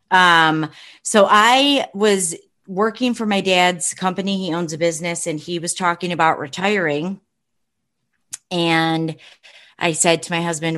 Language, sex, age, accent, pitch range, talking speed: English, female, 30-49, American, 155-195 Hz, 140 wpm